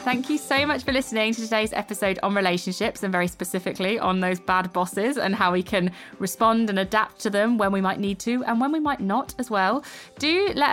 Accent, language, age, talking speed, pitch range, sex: British, English, 20-39, 230 wpm, 180-235 Hz, female